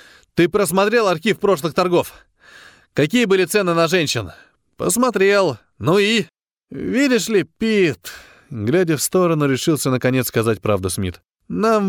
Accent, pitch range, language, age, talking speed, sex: native, 130-200 Hz, Russian, 20-39, 125 wpm, male